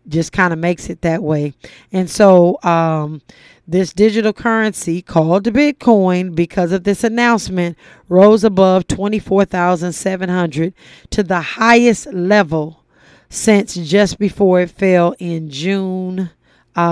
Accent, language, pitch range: American, English, 175-225 Hz